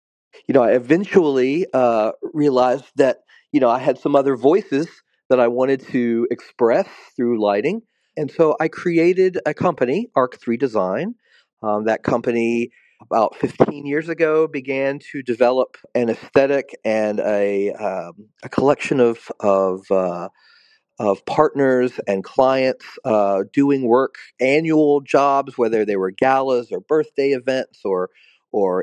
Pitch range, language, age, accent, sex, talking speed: 125-165 Hz, English, 40-59, American, male, 140 wpm